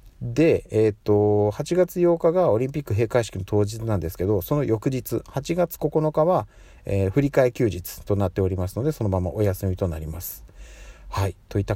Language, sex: Japanese, male